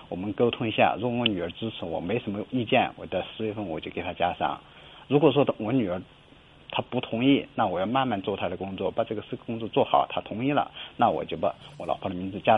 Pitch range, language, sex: 100-120 Hz, Chinese, male